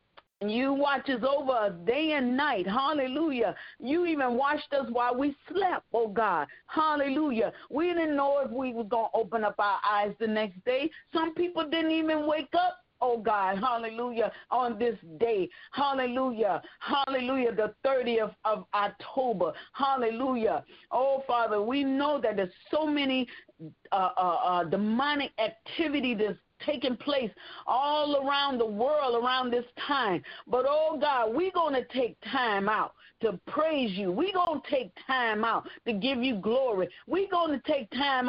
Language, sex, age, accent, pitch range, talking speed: English, female, 40-59, American, 230-290 Hz, 160 wpm